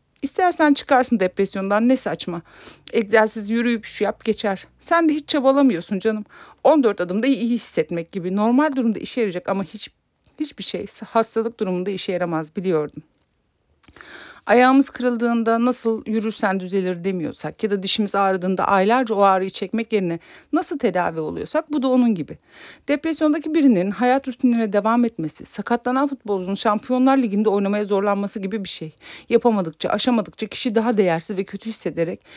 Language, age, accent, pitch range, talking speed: Turkish, 50-69, native, 185-250 Hz, 145 wpm